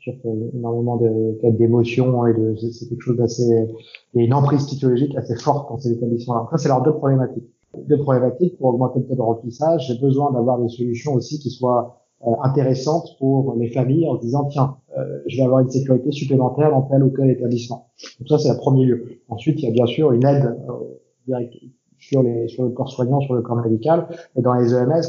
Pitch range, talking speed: 115-135 Hz, 220 wpm